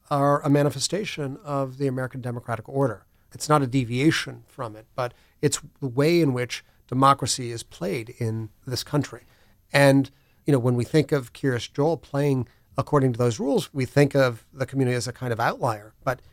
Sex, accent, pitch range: male, American, 120-150 Hz